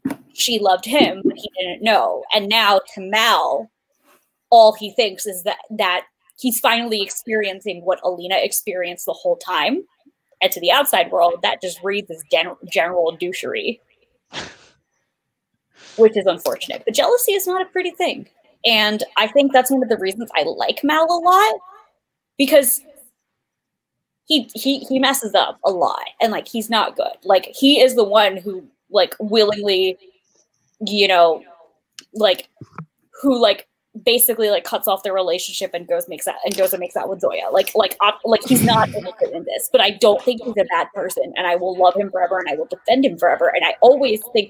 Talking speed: 185 wpm